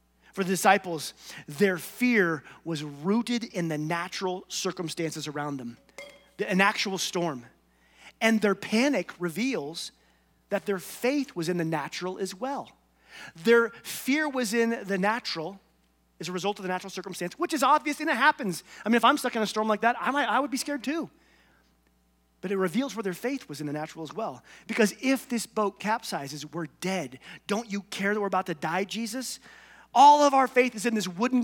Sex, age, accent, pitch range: male, 30-49, American, 175-235 Hz